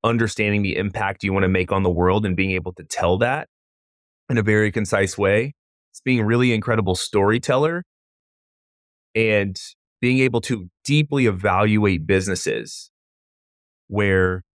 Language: English